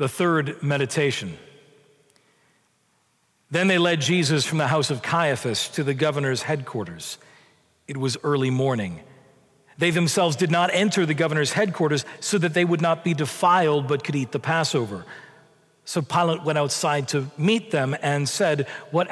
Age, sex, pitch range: 40-59, male, 145-175 Hz